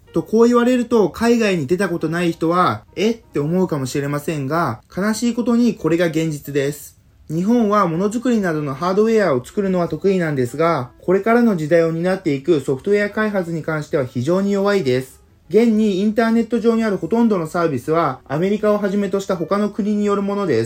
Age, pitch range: 20-39, 160-215 Hz